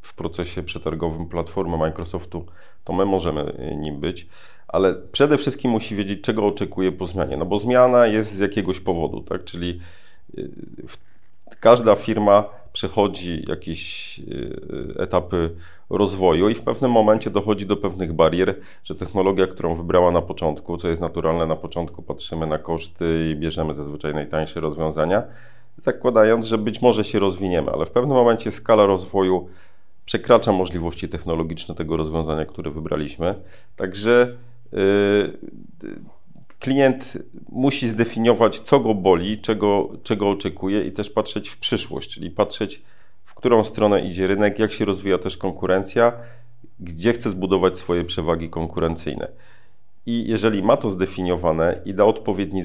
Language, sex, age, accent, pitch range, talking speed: Polish, male, 40-59, native, 85-110 Hz, 140 wpm